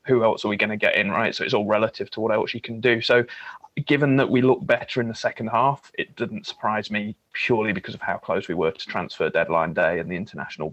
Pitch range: 110-120 Hz